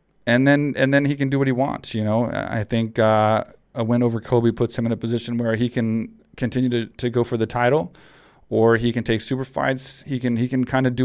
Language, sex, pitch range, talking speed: English, male, 115-130 Hz, 255 wpm